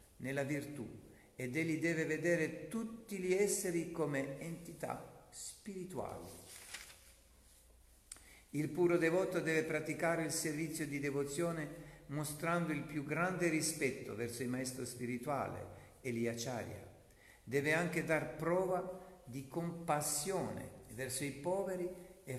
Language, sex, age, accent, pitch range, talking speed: Italian, male, 50-69, native, 125-170 Hz, 110 wpm